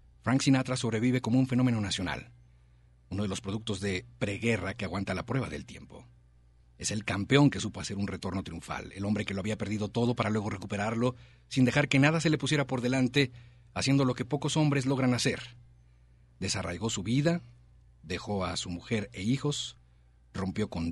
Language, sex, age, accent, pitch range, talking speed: Spanish, male, 50-69, Mexican, 80-120 Hz, 185 wpm